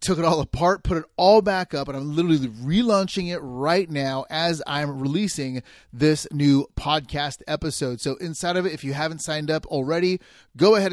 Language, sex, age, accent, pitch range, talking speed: English, male, 30-49, American, 145-185 Hz, 190 wpm